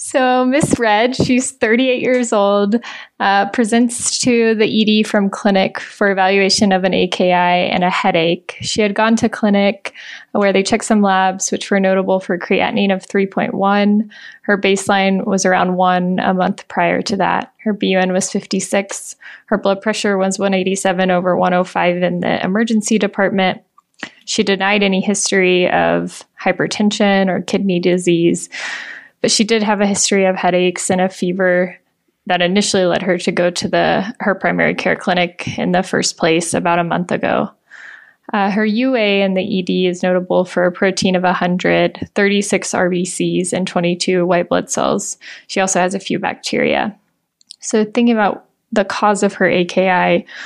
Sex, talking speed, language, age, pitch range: female, 165 wpm, English, 20-39, 180-210 Hz